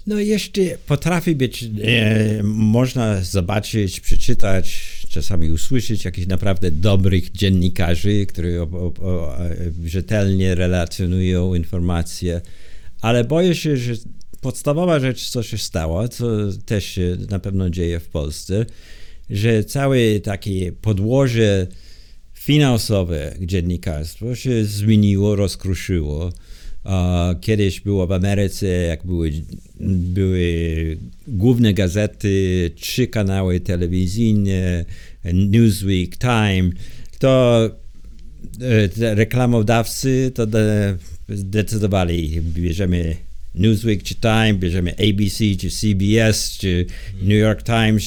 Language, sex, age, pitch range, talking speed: Polish, male, 50-69, 90-110 Hz, 100 wpm